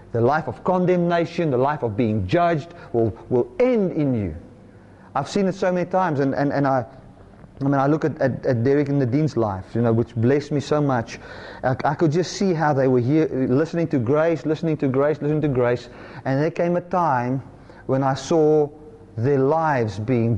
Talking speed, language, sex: 210 wpm, English, male